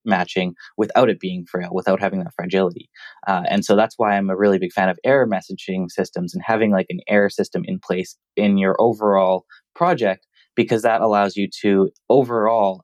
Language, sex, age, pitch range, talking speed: English, male, 20-39, 95-115 Hz, 190 wpm